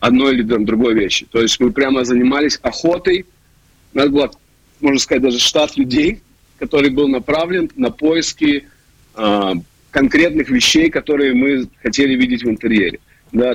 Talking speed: 145 wpm